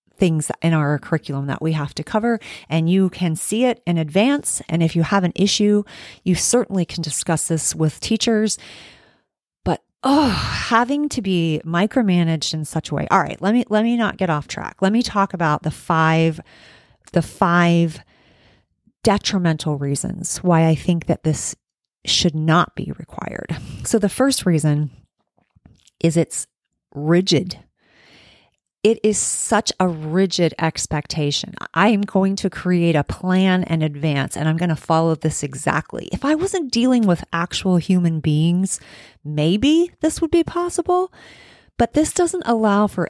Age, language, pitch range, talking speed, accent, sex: 30-49, English, 160-210 Hz, 160 wpm, American, female